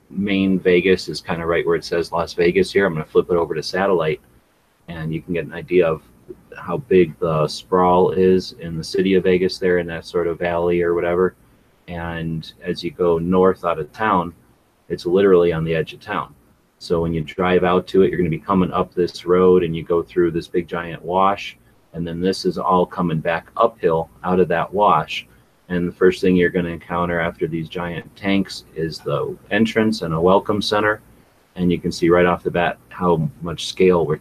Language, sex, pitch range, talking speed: English, male, 85-95 Hz, 220 wpm